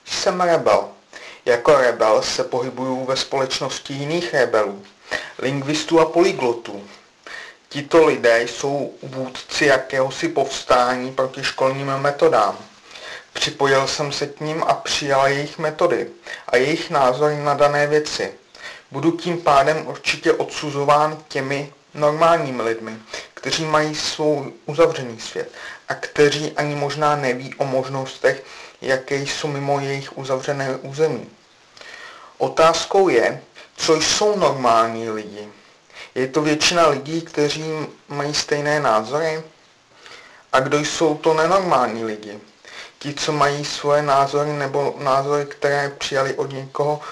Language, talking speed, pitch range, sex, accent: Czech, 120 wpm, 135-155 Hz, male, native